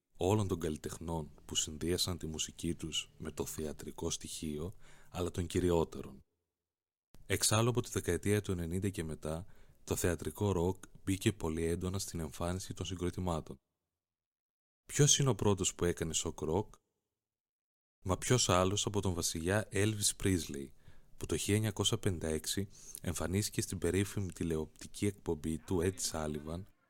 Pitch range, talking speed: 85-100 Hz, 135 wpm